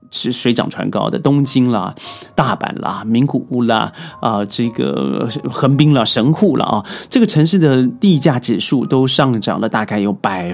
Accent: native